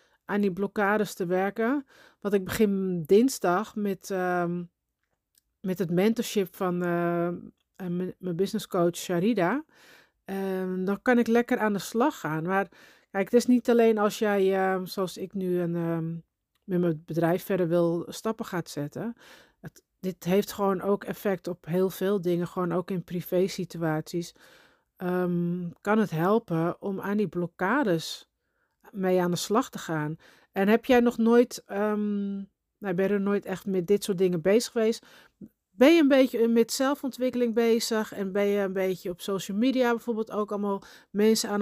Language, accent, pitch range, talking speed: Dutch, Dutch, 185-235 Hz, 170 wpm